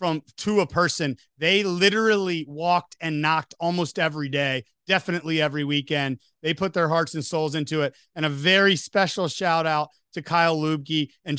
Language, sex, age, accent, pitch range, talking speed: English, male, 30-49, American, 160-200 Hz, 175 wpm